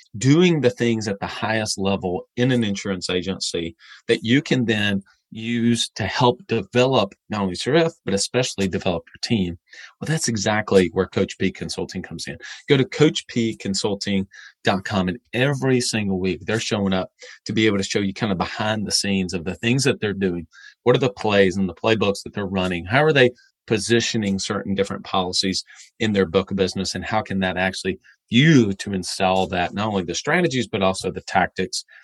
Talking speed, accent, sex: 190 wpm, American, male